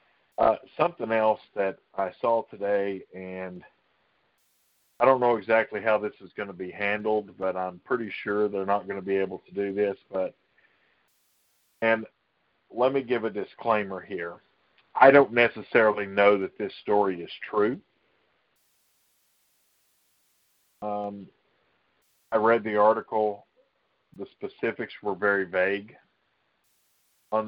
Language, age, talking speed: English, 40-59, 130 wpm